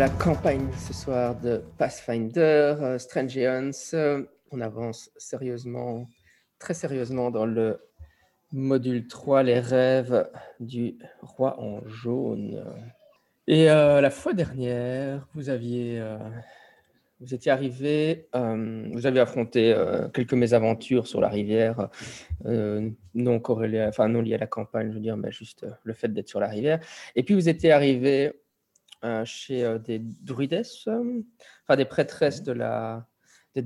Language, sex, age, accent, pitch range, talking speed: English, male, 20-39, French, 115-135 Hz, 140 wpm